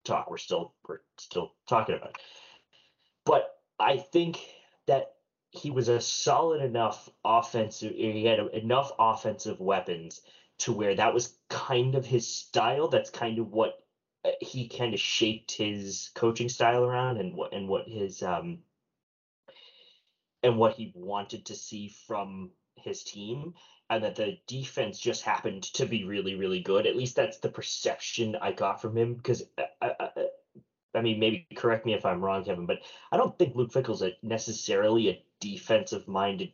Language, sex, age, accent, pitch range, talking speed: English, male, 20-39, American, 110-150 Hz, 165 wpm